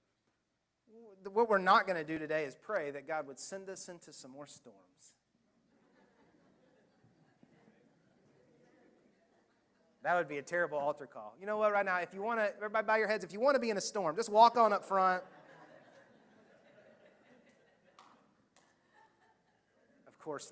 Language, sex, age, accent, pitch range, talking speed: English, male, 30-49, American, 120-160 Hz, 155 wpm